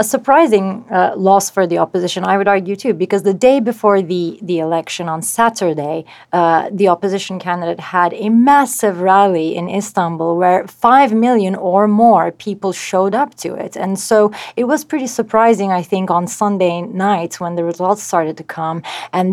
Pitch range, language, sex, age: 175-210 Hz, English, female, 30-49